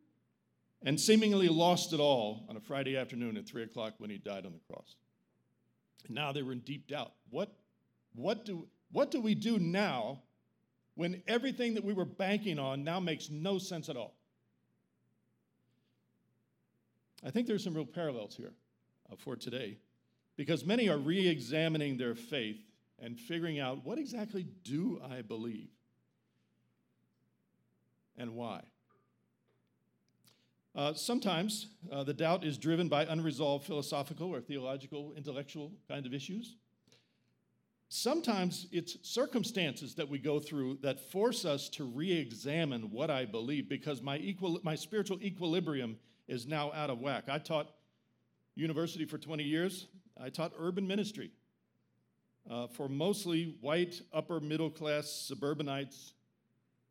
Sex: male